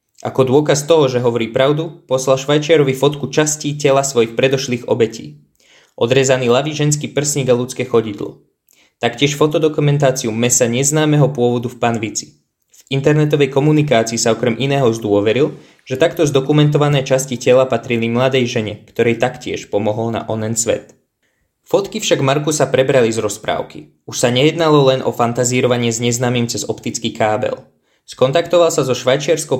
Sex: male